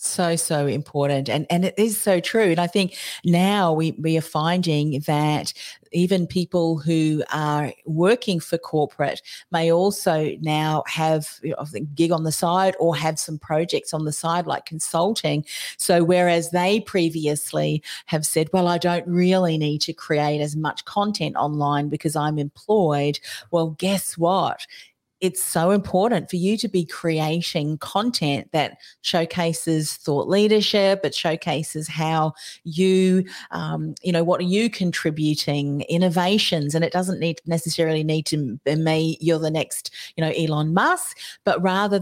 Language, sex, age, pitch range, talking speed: English, female, 40-59, 155-185 Hz, 155 wpm